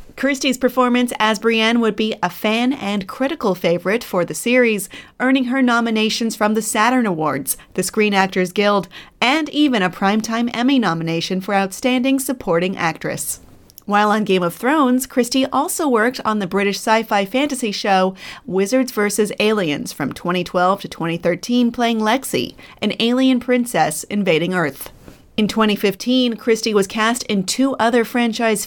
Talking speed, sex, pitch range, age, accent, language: 150 wpm, female, 185-245 Hz, 30-49, American, English